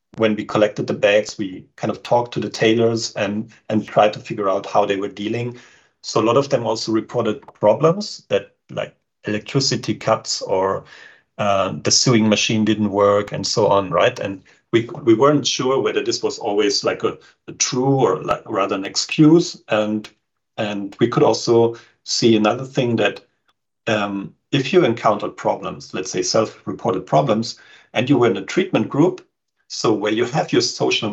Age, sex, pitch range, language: 40-59, male, 105-135 Hz, English